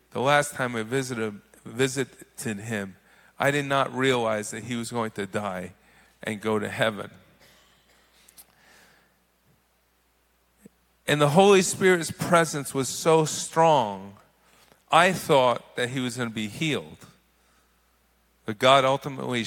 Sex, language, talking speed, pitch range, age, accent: male, English, 125 wpm, 105-155 Hz, 50-69, American